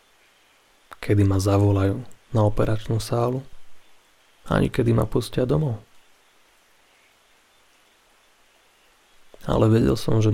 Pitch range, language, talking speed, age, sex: 105-125 Hz, Slovak, 85 wpm, 30-49, male